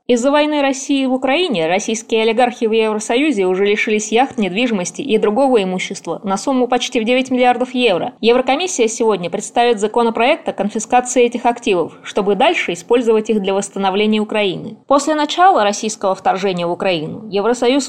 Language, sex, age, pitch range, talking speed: Russian, female, 20-39, 205-250 Hz, 150 wpm